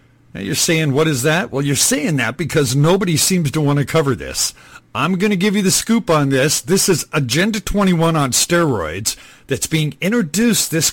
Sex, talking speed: male, 200 wpm